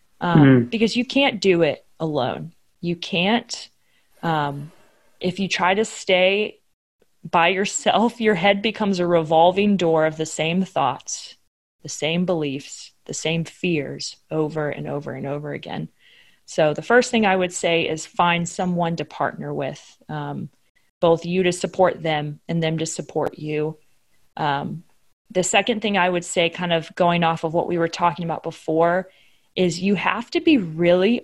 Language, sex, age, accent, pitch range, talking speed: English, female, 20-39, American, 160-190 Hz, 165 wpm